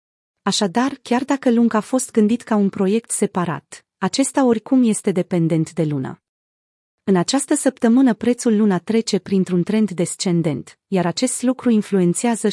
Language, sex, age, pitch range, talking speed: Romanian, female, 30-49, 180-235 Hz, 145 wpm